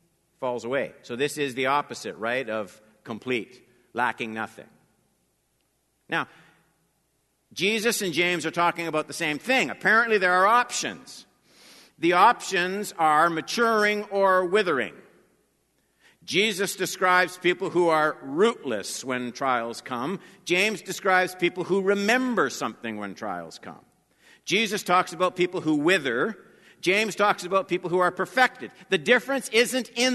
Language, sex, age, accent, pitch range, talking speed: English, male, 50-69, American, 135-200 Hz, 135 wpm